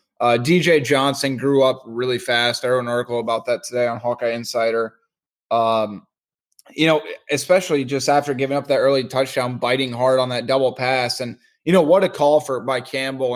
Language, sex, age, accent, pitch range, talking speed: English, male, 20-39, American, 120-135 Hz, 195 wpm